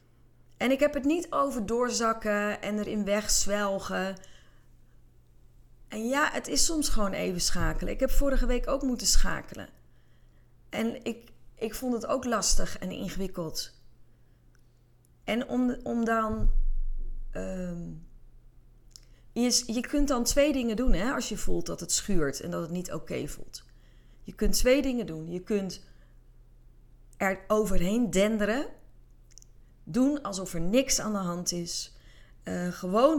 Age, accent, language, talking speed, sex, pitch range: 30-49, Dutch, Dutch, 140 wpm, female, 160-240 Hz